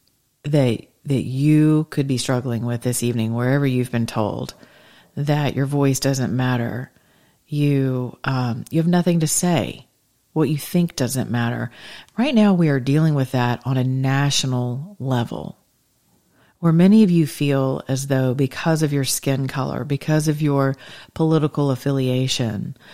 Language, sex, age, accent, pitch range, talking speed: English, female, 40-59, American, 130-160 Hz, 150 wpm